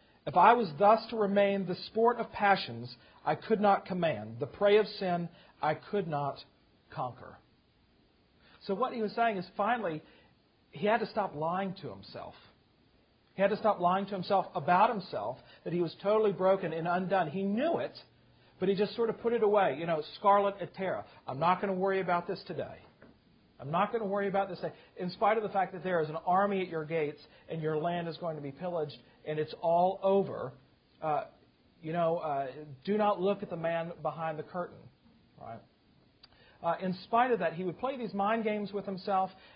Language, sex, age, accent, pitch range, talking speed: English, male, 40-59, American, 160-200 Hz, 205 wpm